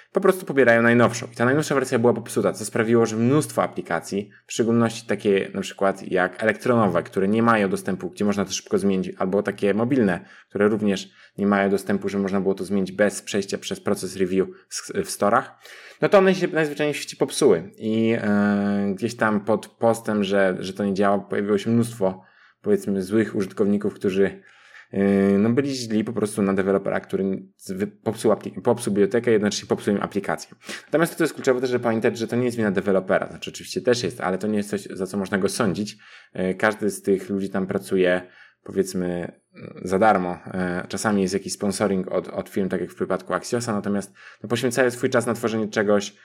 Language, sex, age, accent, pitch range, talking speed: Polish, male, 20-39, native, 100-115 Hz, 190 wpm